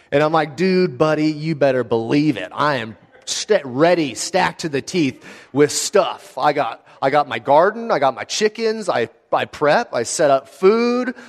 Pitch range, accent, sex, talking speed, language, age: 135-195 Hz, American, male, 190 wpm, English, 30-49